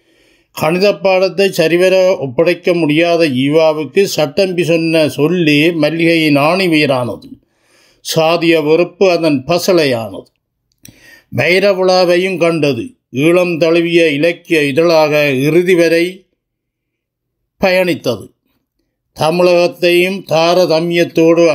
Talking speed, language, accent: 75 wpm, Tamil, native